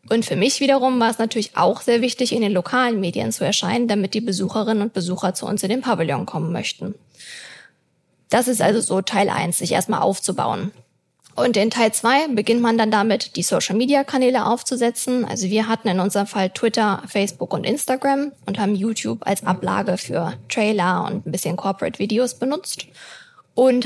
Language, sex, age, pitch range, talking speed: German, female, 20-39, 200-235 Hz, 180 wpm